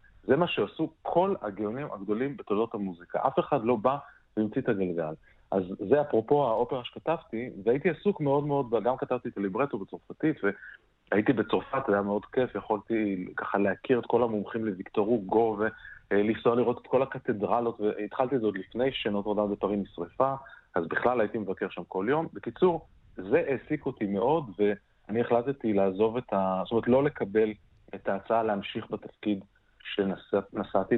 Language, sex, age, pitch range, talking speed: Hebrew, male, 30-49, 100-140 Hz, 145 wpm